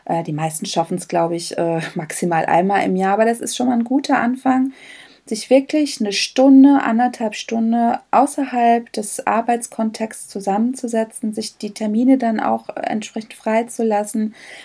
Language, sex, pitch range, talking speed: German, female, 195-245 Hz, 145 wpm